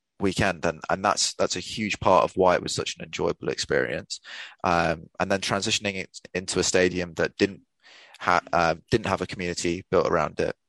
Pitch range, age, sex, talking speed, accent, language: 85-95 Hz, 20-39, male, 195 wpm, British, English